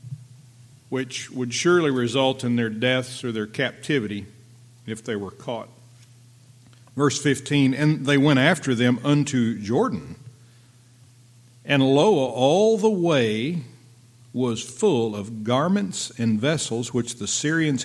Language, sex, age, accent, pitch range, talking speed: English, male, 50-69, American, 115-130 Hz, 125 wpm